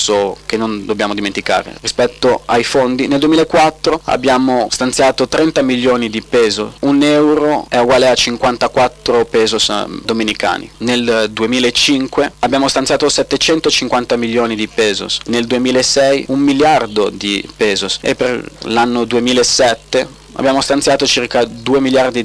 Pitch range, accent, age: 115-140 Hz, native, 30-49